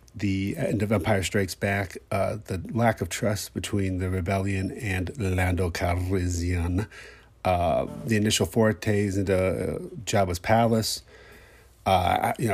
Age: 30-49